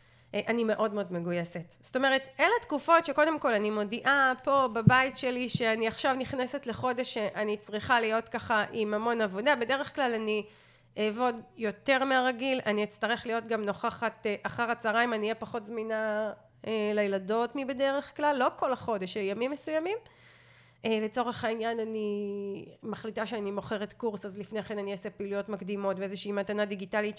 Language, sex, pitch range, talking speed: Hebrew, female, 210-260 Hz, 150 wpm